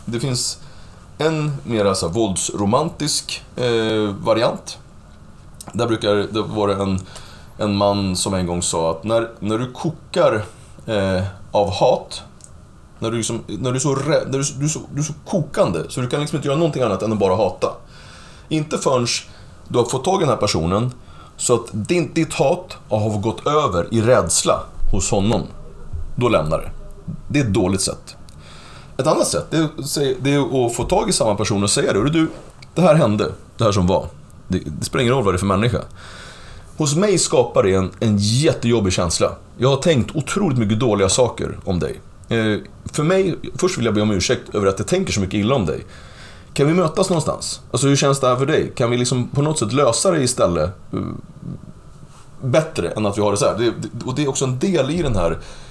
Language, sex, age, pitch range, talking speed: Swedish, male, 30-49, 100-140 Hz, 200 wpm